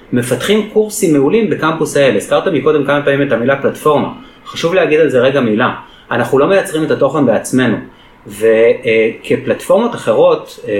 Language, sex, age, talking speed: Hebrew, male, 30-49, 155 wpm